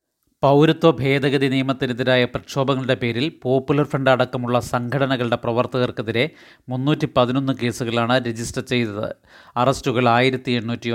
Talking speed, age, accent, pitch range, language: 100 wpm, 30-49, native, 125-140 Hz, Malayalam